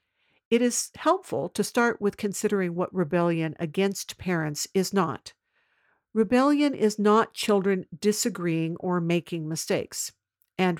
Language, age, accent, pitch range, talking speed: English, 50-69, American, 170-205 Hz, 120 wpm